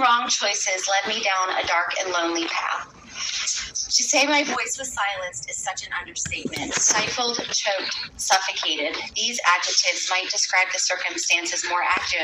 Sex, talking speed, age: female, 145 wpm, 30-49